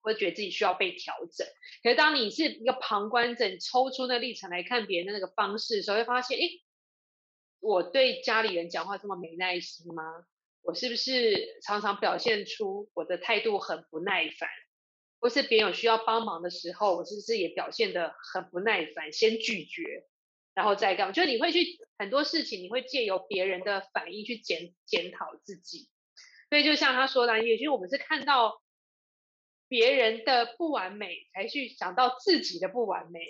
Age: 20-39